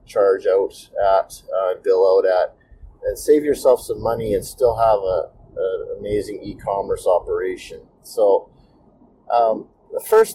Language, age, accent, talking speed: English, 40-59, American, 135 wpm